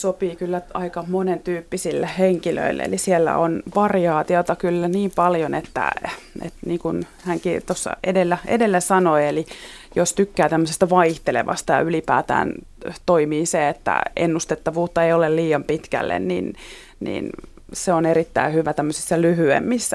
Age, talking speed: 30-49, 130 wpm